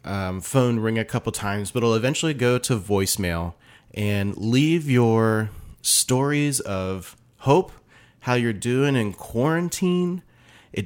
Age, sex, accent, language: 30-49, male, American, English